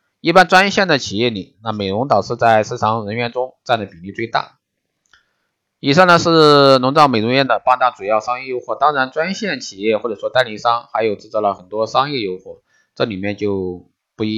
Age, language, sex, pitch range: 20-39, Chinese, male, 100-125 Hz